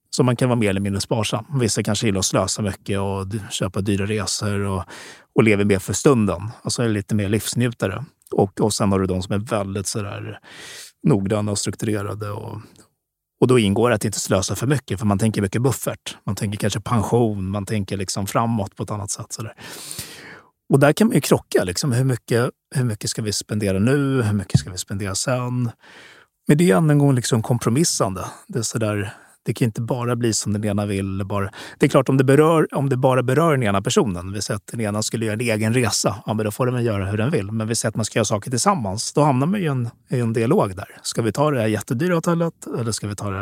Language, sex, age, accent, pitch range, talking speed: Swedish, male, 30-49, native, 105-130 Hz, 240 wpm